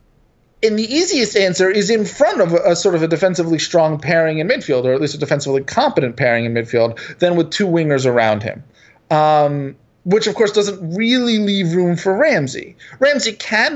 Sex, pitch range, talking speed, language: male, 145-205 Hz, 195 wpm, English